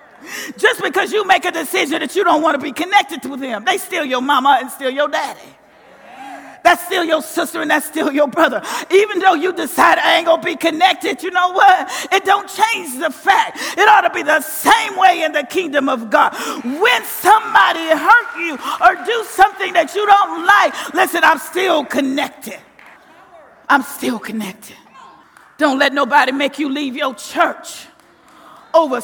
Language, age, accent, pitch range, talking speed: English, 40-59, American, 290-375 Hz, 185 wpm